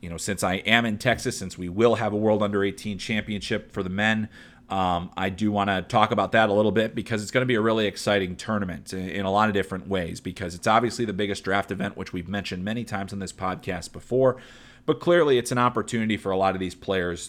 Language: English